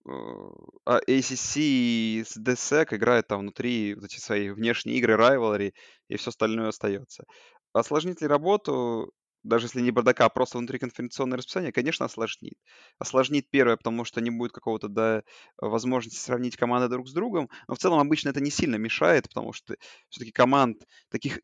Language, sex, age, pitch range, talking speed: Russian, male, 20-39, 110-130 Hz, 160 wpm